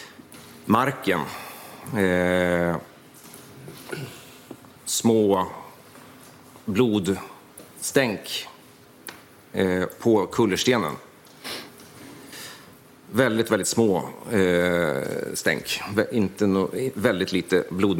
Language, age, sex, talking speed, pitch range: Swedish, 40-59, male, 45 wpm, 95-110 Hz